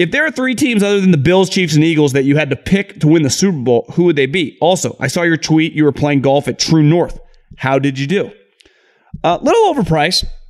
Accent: American